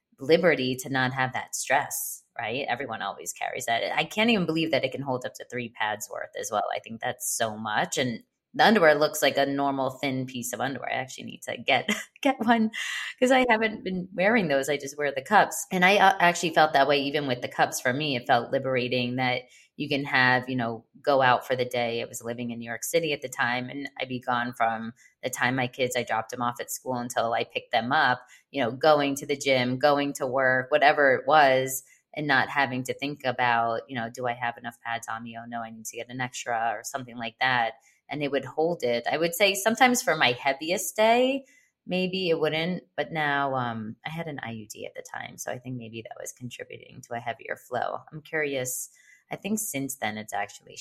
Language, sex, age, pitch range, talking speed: English, female, 20-39, 125-160 Hz, 235 wpm